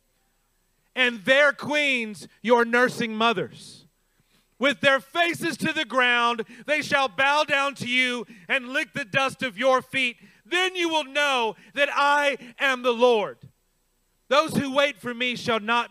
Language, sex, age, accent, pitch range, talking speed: English, male, 40-59, American, 215-280 Hz, 155 wpm